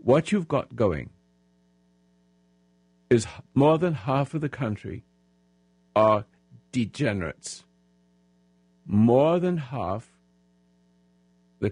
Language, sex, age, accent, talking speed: English, male, 60-79, American, 85 wpm